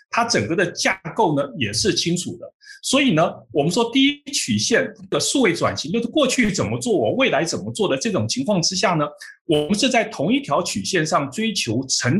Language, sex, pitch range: Chinese, male, 170-265 Hz